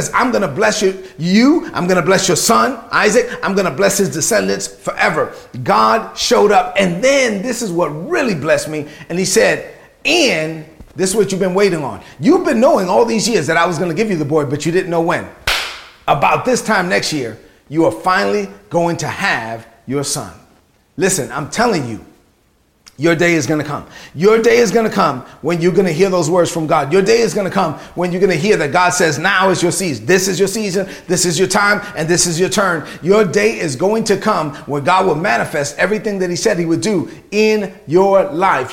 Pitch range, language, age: 160-195 Hz, English, 30-49